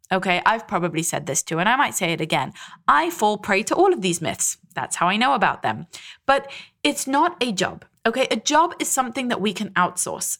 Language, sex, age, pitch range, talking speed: English, female, 20-39, 185-250 Hz, 230 wpm